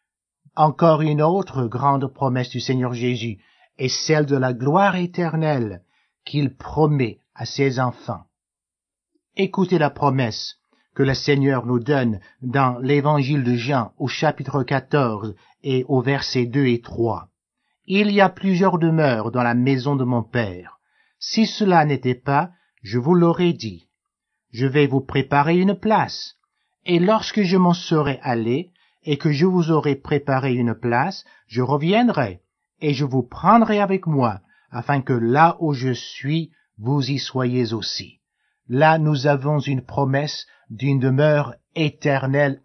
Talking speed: 150 wpm